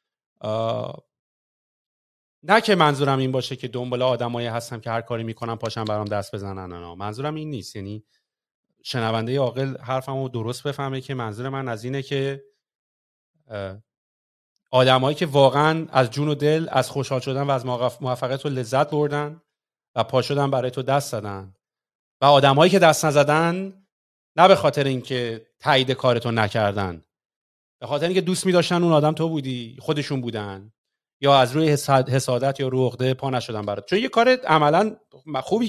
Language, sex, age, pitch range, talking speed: Persian, male, 30-49, 115-150 Hz, 160 wpm